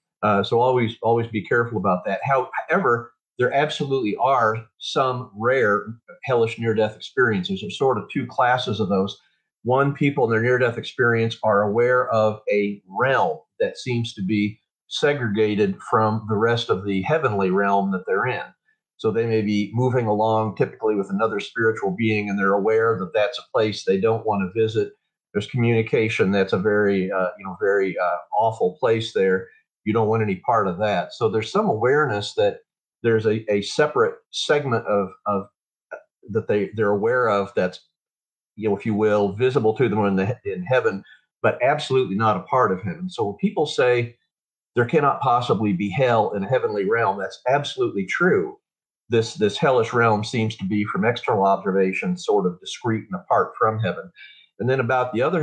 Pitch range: 105-130 Hz